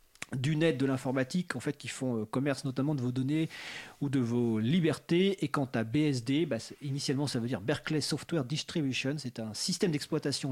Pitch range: 120-165 Hz